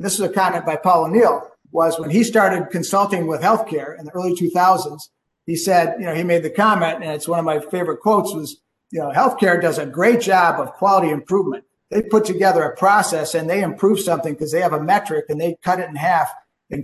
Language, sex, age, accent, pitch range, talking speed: English, male, 50-69, American, 160-185 Hz, 230 wpm